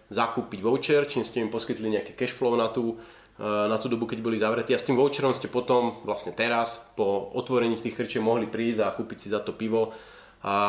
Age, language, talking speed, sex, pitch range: 30-49, Slovak, 200 wpm, male, 110-125 Hz